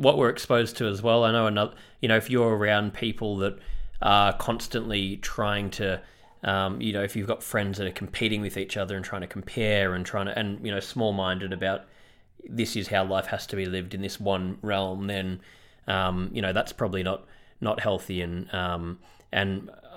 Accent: Australian